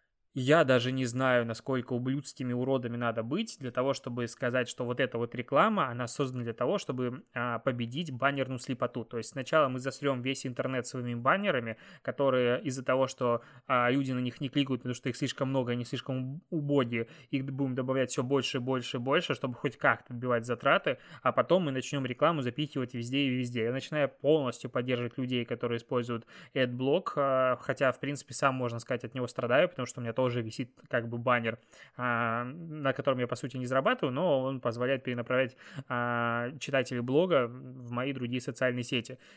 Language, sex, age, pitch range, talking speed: Russian, male, 20-39, 125-140 Hz, 180 wpm